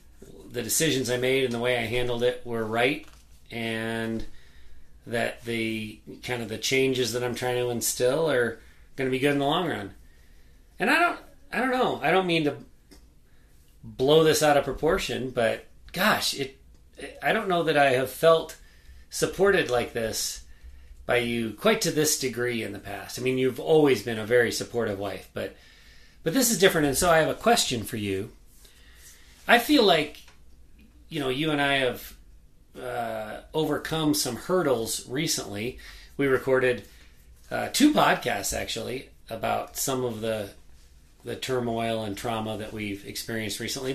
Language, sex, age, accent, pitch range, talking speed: English, male, 30-49, American, 110-145 Hz, 170 wpm